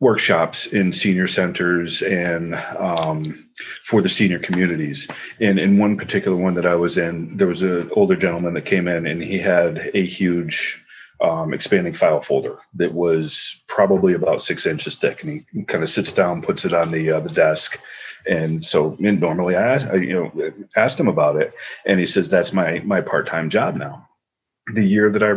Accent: American